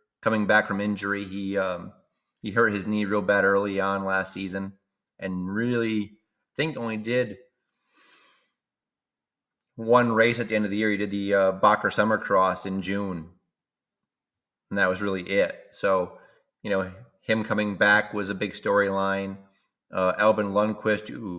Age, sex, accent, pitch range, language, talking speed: 30-49, male, American, 95-105 Hz, English, 155 wpm